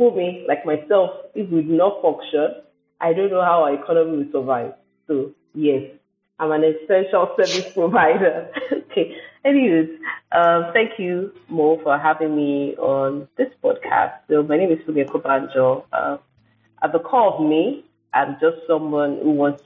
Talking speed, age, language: 155 wpm, 30-49, English